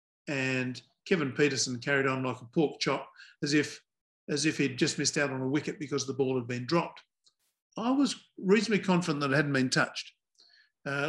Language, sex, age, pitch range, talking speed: English, male, 50-69, 140-170 Hz, 195 wpm